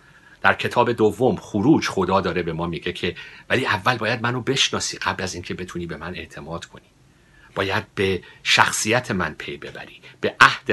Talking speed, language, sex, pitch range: 175 wpm, Persian, male, 85-115 Hz